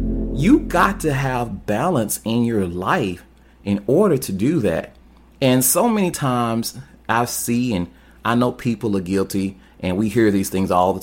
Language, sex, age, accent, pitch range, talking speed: English, male, 30-49, American, 95-125 Hz, 175 wpm